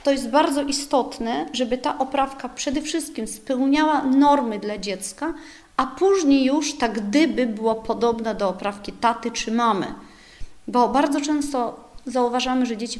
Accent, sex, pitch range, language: native, female, 230-285 Hz, Polish